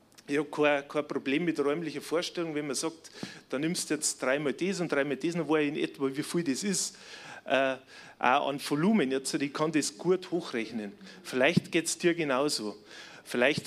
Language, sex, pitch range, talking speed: German, male, 135-175 Hz, 195 wpm